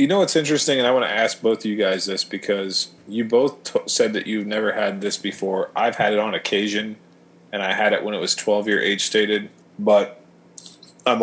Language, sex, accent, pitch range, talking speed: English, male, American, 90-100 Hz, 230 wpm